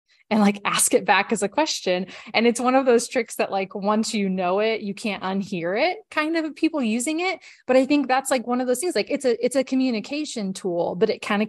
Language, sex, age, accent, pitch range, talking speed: English, female, 20-39, American, 190-235 Hz, 255 wpm